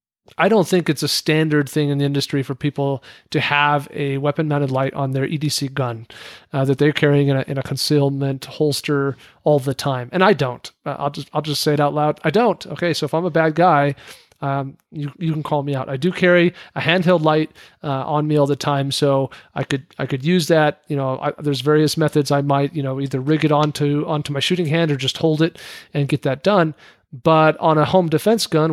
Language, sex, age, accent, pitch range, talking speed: English, male, 40-59, American, 140-165 Hz, 240 wpm